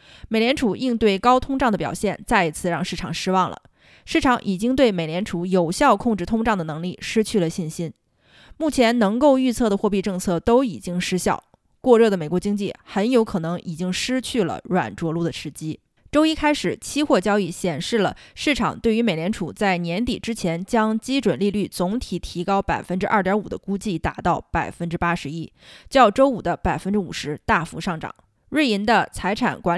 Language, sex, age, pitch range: Chinese, female, 20-39, 180-235 Hz